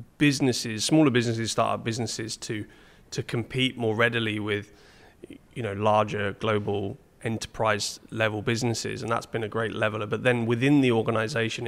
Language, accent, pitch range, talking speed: English, British, 110-125 Hz, 155 wpm